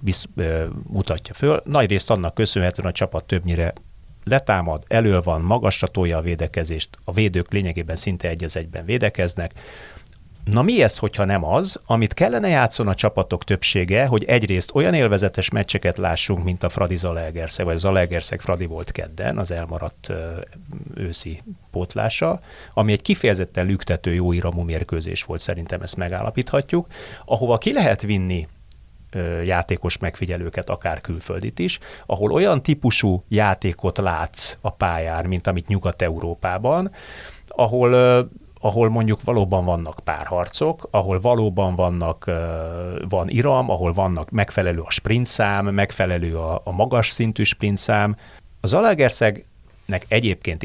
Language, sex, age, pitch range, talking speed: Hungarian, male, 30-49, 85-110 Hz, 125 wpm